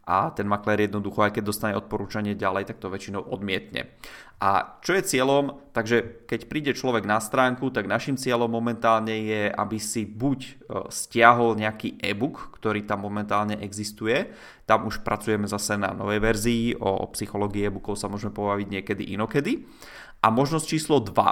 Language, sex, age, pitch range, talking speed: Czech, male, 20-39, 105-120 Hz, 165 wpm